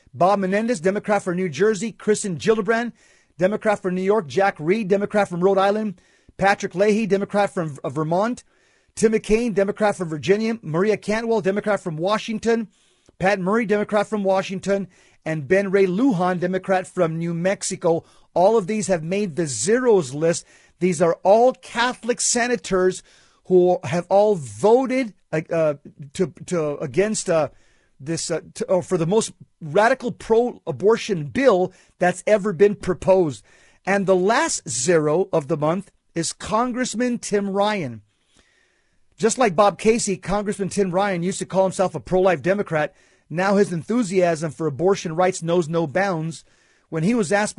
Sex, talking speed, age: male, 150 wpm, 40-59